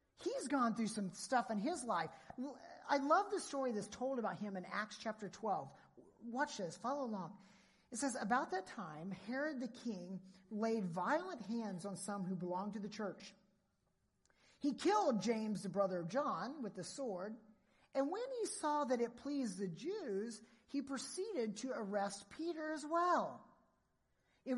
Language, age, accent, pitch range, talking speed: English, 40-59, American, 195-270 Hz, 170 wpm